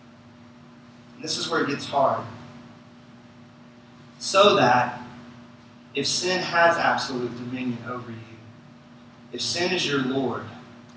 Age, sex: 30-49, male